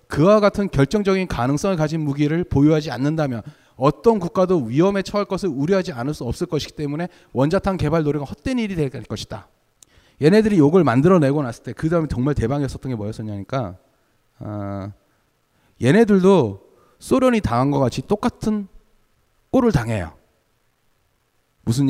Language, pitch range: Korean, 125-200 Hz